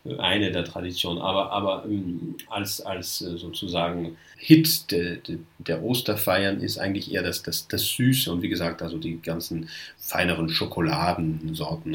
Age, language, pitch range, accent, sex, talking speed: 40-59, German, 85-110 Hz, German, male, 150 wpm